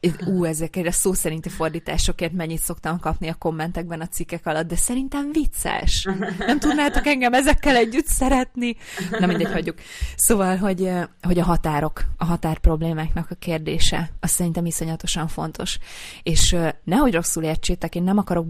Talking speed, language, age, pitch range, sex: 150 wpm, Hungarian, 20-39, 155-175 Hz, female